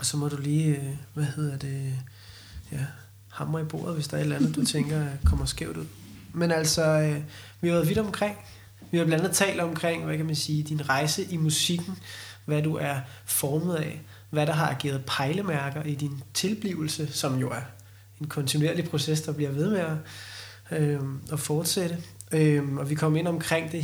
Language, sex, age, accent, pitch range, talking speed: Danish, male, 20-39, native, 135-160 Hz, 190 wpm